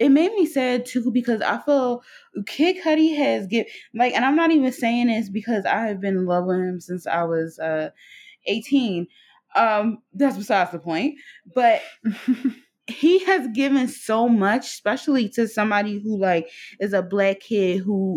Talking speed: 175 wpm